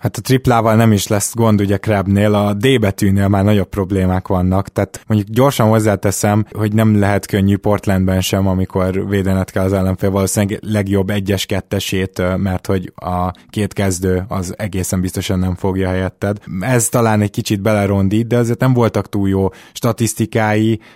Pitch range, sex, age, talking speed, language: 95-110 Hz, male, 20-39, 165 wpm, Hungarian